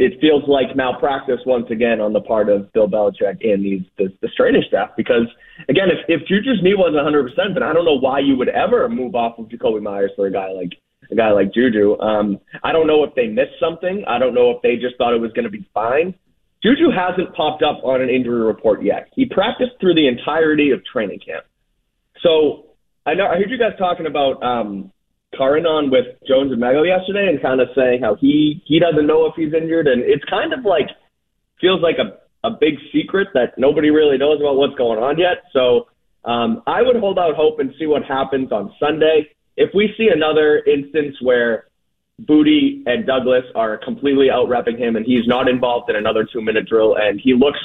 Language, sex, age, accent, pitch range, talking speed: English, male, 30-49, American, 120-170 Hz, 215 wpm